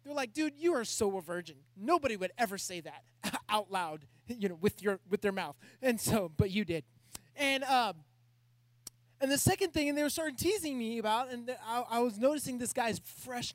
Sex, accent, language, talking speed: male, American, English, 215 wpm